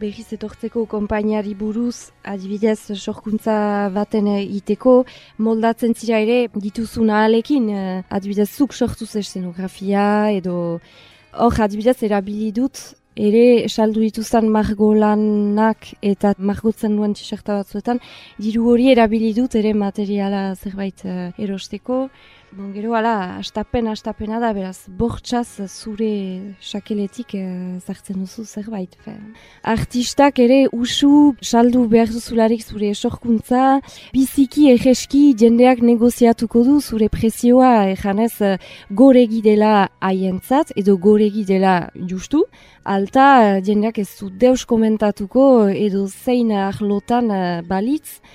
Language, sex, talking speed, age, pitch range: French, female, 100 wpm, 20-39, 200-235 Hz